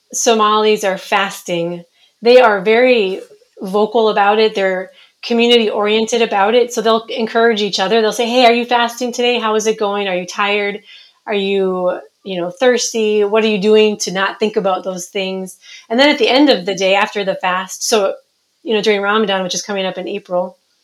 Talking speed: 200 wpm